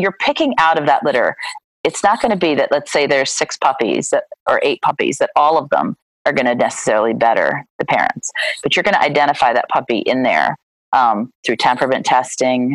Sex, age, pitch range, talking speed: female, 30-49, 140-190 Hz, 210 wpm